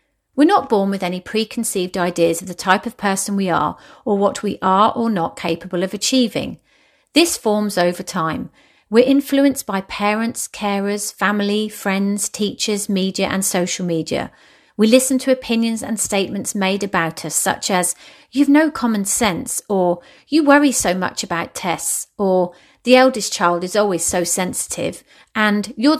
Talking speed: 165 wpm